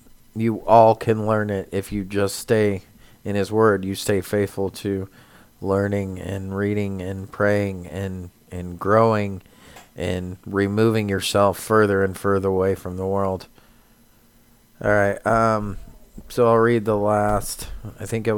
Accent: American